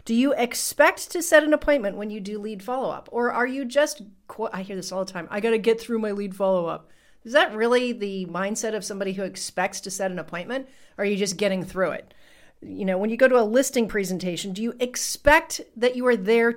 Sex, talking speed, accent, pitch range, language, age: female, 240 wpm, American, 195-255 Hz, English, 40-59